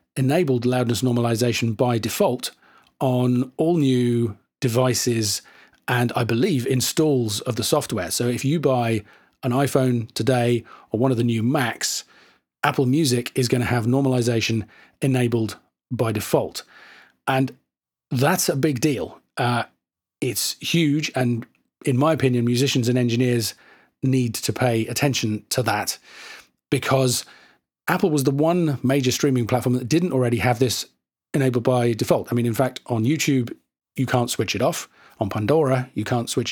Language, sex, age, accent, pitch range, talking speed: English, male, 40-59, British, 120-135 Hz, 150 wpm